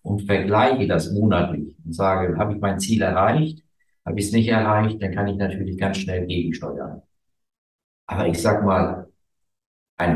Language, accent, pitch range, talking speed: German, German, 90-115 Hz, 165 wpm